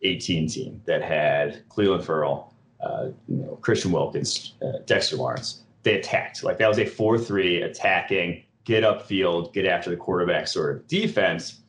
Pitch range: 95-110 Hz